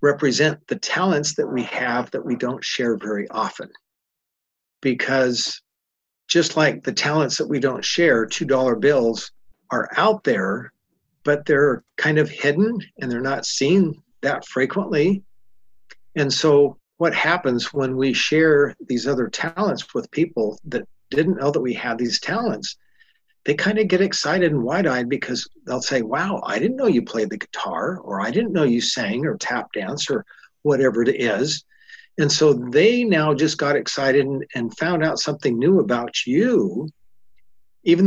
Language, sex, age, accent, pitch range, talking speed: English, male, 50-69, American, 125-170 Hz, 165 wpm